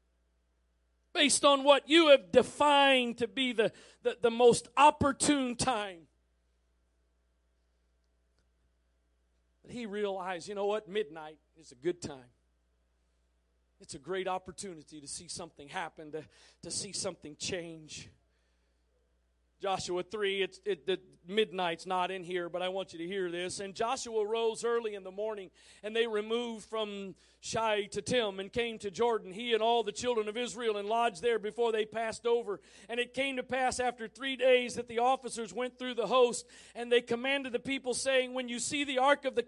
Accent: American